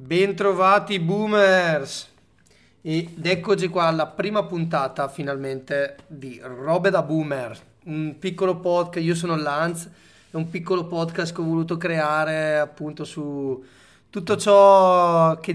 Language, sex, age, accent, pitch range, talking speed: Italian, male, 30-49, native, 135-175 Hz, 125 wpm